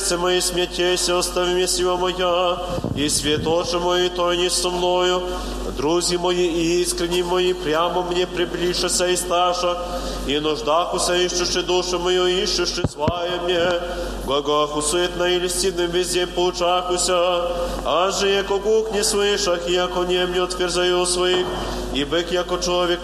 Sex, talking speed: male, 140 wpm